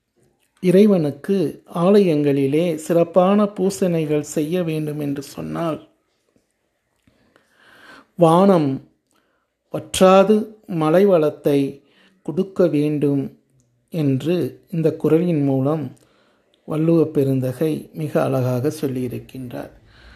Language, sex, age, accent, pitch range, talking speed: Tamil, male, 60-79, native, 145-180 Hz, 65 wpm